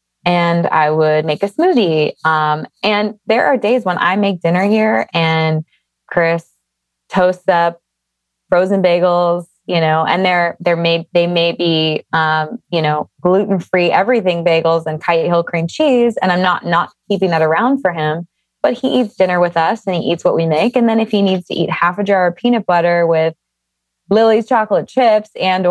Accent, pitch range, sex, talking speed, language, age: American, 160-195 Hz, female, 180 wpm, English, 20-39